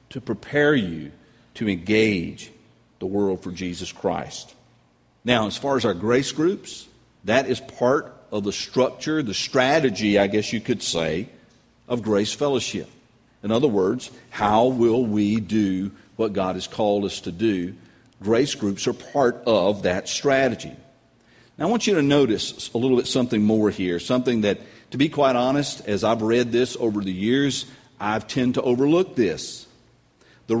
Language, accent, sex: English, American, male